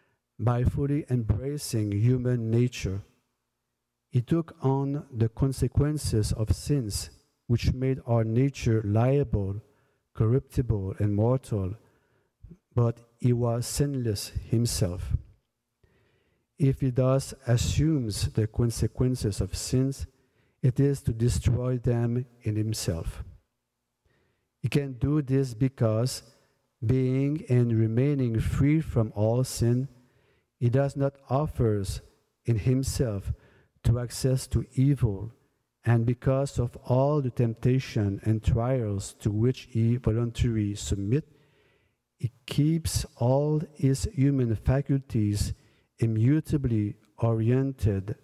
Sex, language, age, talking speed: male, English, 50-69, 105 wpm